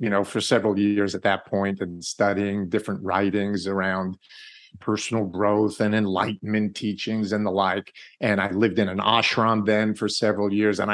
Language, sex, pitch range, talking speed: English, male, 100-125 Hz, 175 wpm